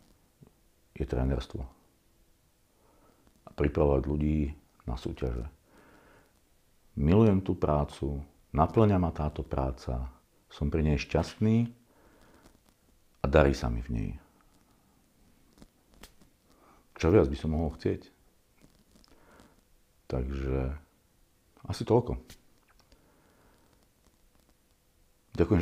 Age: 50-69